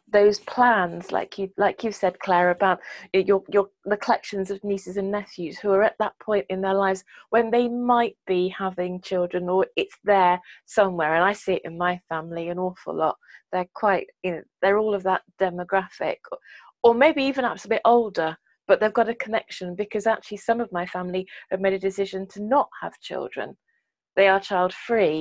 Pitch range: 180-215 Hz